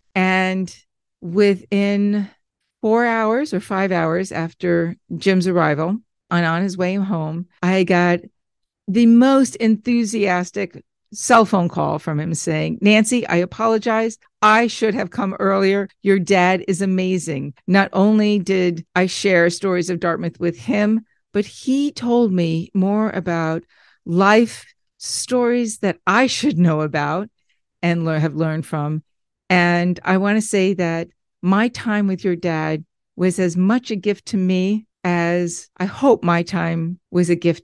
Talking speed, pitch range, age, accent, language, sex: 145 wpm, 175-215 Hz, 50-69, American, English, female